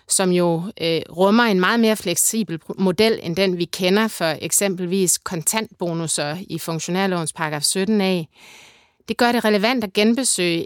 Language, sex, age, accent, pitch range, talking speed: Danish, female, 30-49, native, 175-220 Hz, 150 wpm